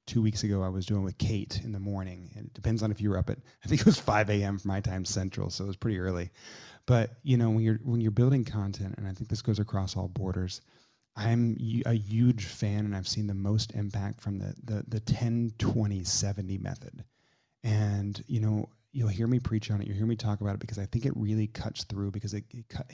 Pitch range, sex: 100-120 Hz, male